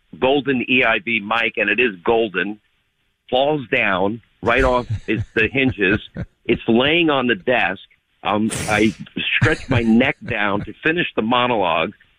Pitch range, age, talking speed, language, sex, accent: 105-130 Hz, 50-69, 140 wpm, English, male, American